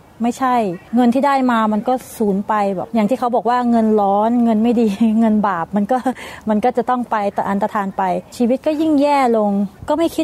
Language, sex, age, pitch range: Thai, female, 30-49, 215-250 Hz